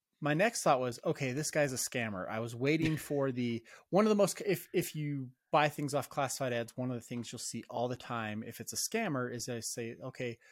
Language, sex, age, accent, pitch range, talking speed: English, male, 20-39, American, 120-165 Hz, 245 wpm